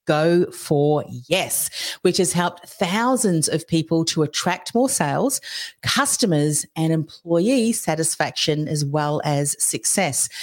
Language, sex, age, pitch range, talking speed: English, female, 40-59, 160-205 Hz, 120 wpm